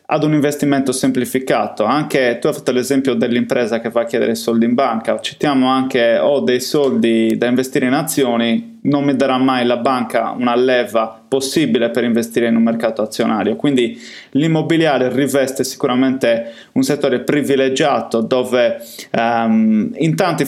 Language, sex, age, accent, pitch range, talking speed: Italian, male, 20-39, native, 120-140 Hz, 150 wpm